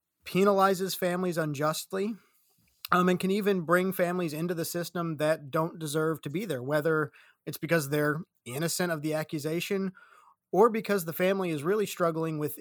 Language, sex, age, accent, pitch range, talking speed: English, male, 30-49, American, 150-180 Hz, 160 wpm